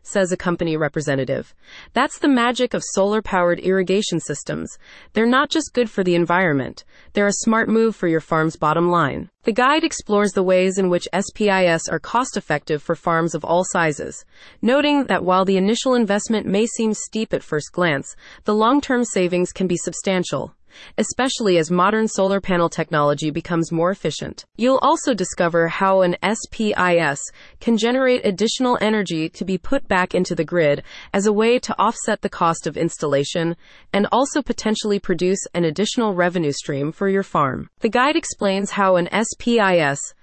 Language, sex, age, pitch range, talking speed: English, female, 30-49, 170-225 Hz, 165 wpm